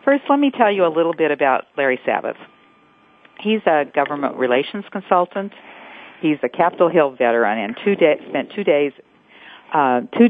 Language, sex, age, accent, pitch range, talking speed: English, female, 50-69, American, 140-200 Hz, 170 wpm